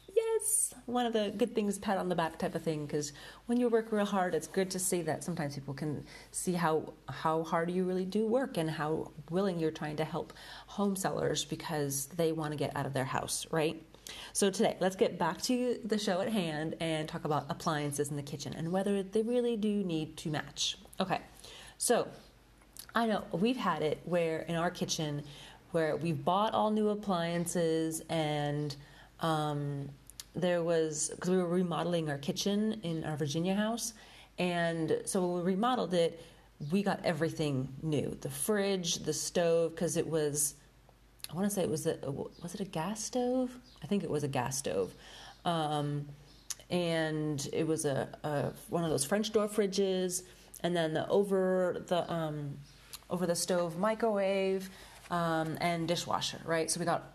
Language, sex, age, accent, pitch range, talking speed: English, female, 30-49, American, 155-195 Hz, 185 wpm